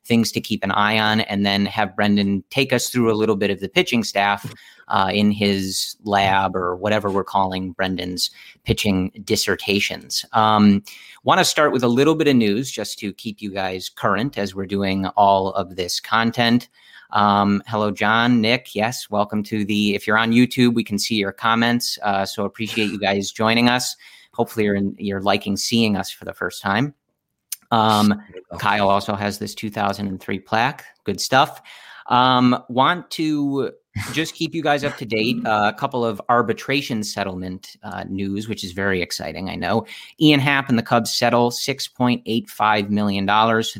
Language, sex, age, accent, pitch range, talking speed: English, male, 30-49, American, 100-125 Hz, 175 wpm